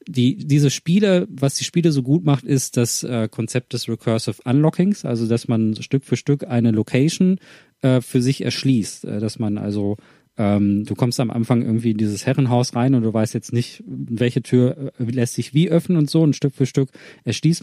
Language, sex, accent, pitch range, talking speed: German, male, German, 115-140 Hz, 210 wpm